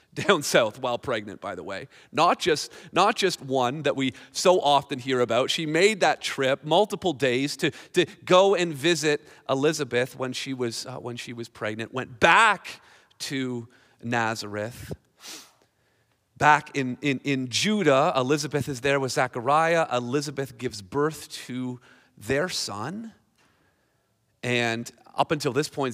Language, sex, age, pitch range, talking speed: English, male, 40-59, 120-150 Hz, 145 wpm